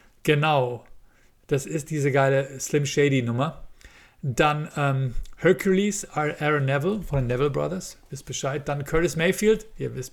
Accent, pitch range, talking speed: German, 135-170 Hz, 160 wpm